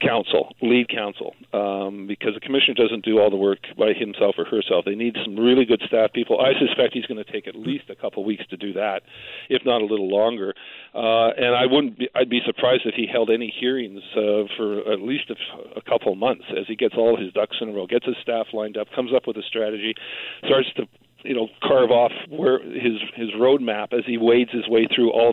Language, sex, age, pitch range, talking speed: English, male, 50-69, 110-130 Hz, 240 wpm